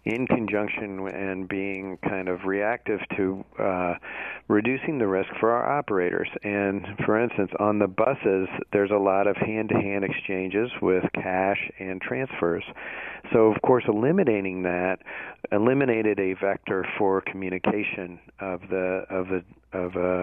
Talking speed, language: 140 wpm, English